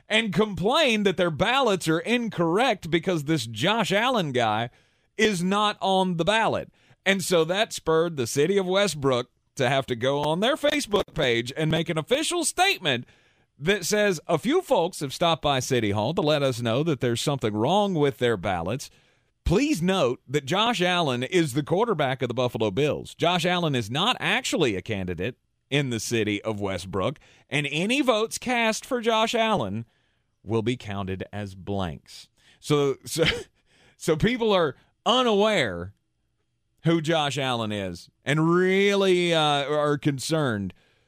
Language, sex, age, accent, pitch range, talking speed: English, male, 40-59, American, 110-185 Hz, 160 wpm